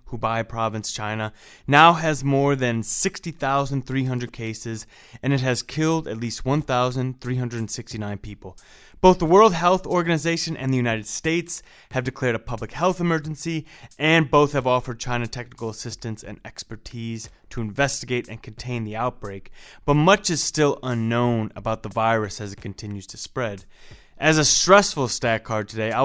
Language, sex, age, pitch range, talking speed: English, male, 20-39, 110-140 Hz, 155 wpm